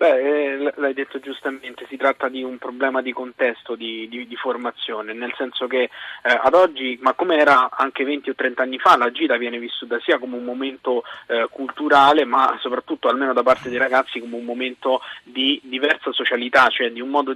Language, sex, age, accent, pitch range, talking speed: Italian, male, 20-39, native, 120-140 Hz, 195 wpm